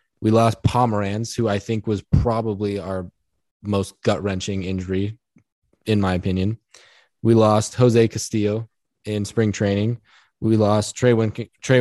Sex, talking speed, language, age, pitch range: male, 130 wpm, English, 10-29, 95-115 Hz